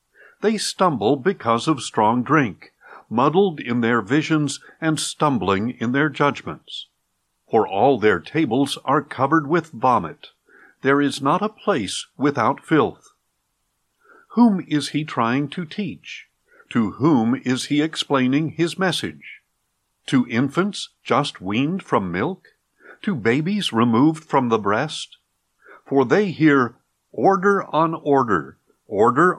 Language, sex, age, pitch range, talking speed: English, male, 50-69, 130-185 Hz, 125 wpm